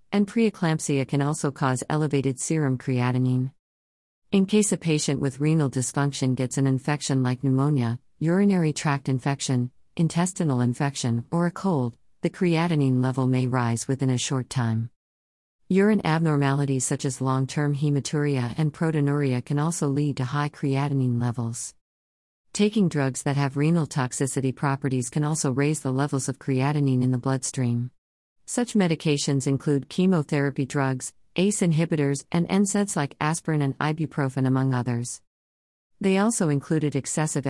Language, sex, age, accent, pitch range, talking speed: English, female, 50-69, American, 130-155 Hz, 140 wpm